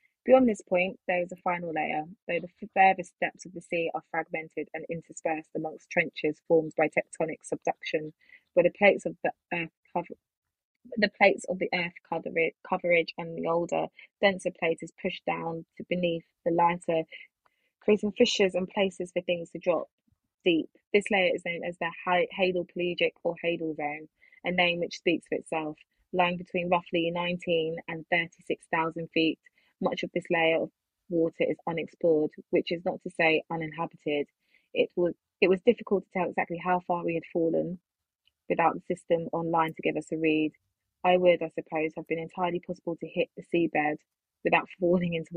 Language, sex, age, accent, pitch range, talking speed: English, female, 20-39, British, 160-180 Hz, 185 wpm